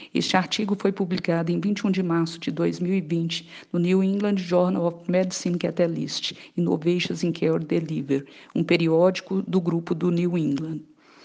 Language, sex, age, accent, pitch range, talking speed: Portuguese, female, 50-69, Brazilian, 170-190 Hz, 150 wpm